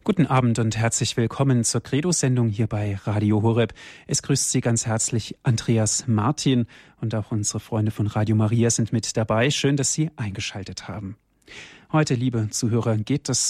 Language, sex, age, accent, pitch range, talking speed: German, male, 40-59, German, 115-135 Hz, 170 wpm